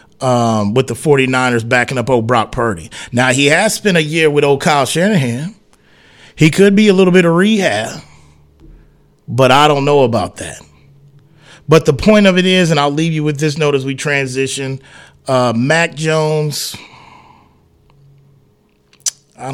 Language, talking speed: English, 160 wpm